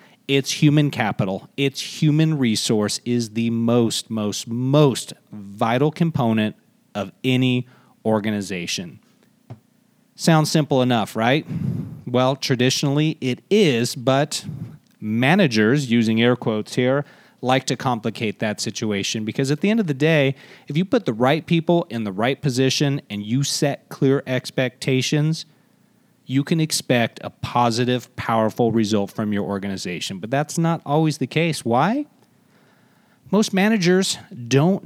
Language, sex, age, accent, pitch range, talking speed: English, male, 30-49, American, 115-160 Hz, 135 wpm